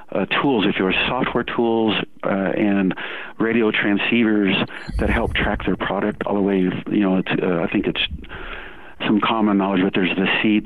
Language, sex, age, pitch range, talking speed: English, male, 50-69, 90-105 Hz, 180 wpm